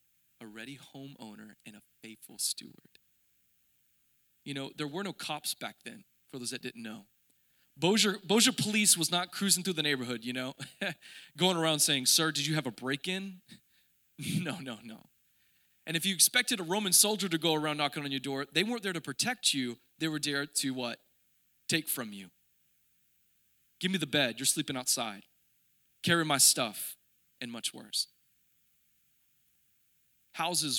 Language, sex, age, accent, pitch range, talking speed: English, male, 20-39, American, 135-195 Hz, 165 wpm